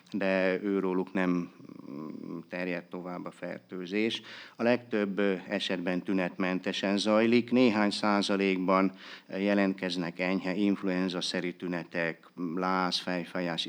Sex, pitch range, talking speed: male, 90-100 Hz, 90 wpm